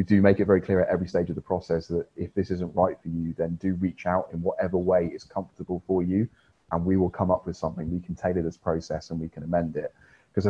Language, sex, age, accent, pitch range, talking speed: English, male, 30-49, British, 85-95 Hz, 275 wpm